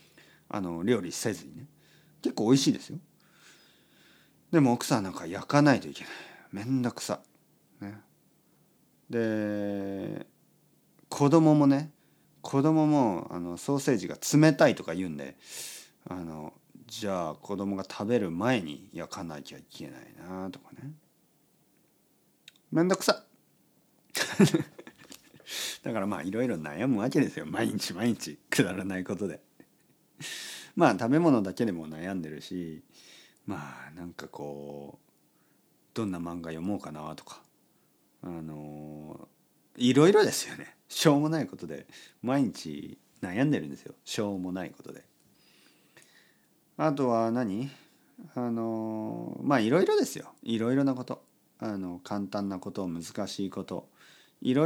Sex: male